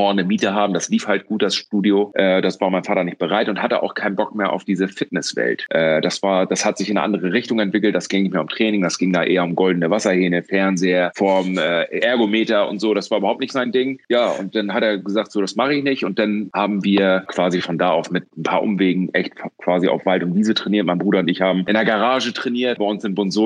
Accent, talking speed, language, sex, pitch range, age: German, 265 wpm, German, male, 95-110 Hz, 30-49